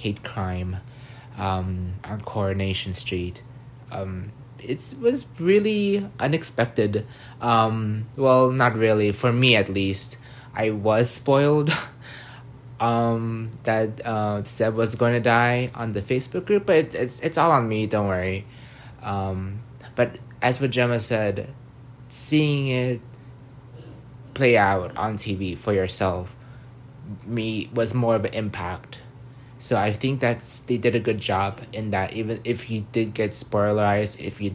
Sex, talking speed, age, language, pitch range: male, 140 wpm, 20-39, English, 105-125 Hz